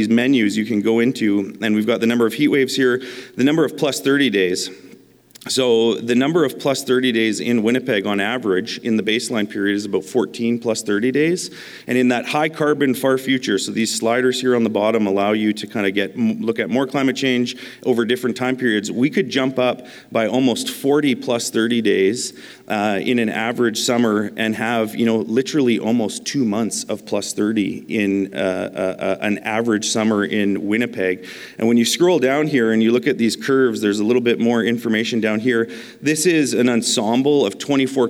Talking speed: 205 wpm